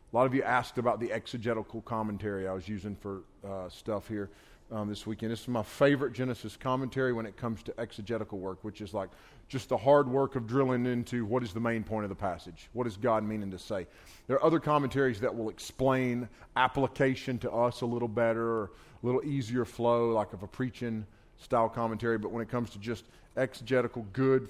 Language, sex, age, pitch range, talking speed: English, male, 30-49, 105-125 Hz, 210 wpm